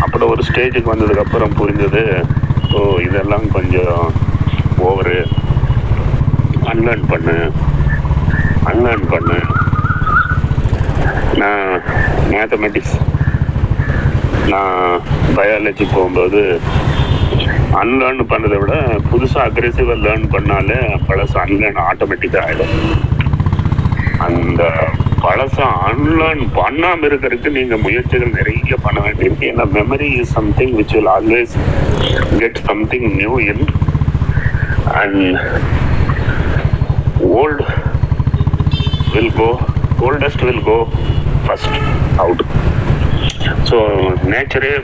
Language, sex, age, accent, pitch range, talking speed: Tamil, male, 30-49, native, 100-125 Hz, 80 wpm